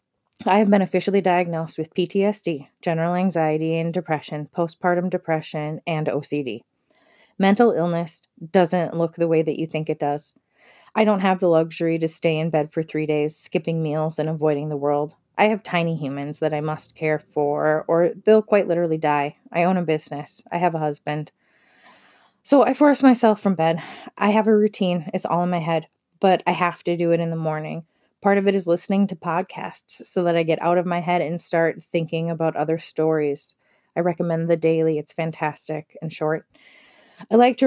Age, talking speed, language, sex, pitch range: 20-39, 195 wpm, English, female, 155-185 Hz